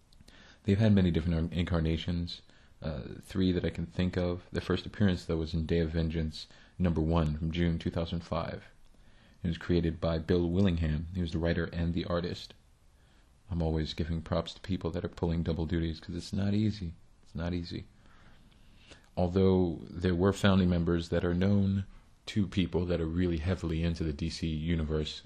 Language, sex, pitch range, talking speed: English, male, 80-95 Hz, 180 wpm